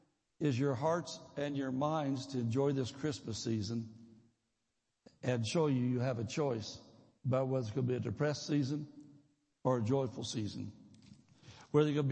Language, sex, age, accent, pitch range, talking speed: English, male, 60-79, American, 130-180 Hz, 160 wpm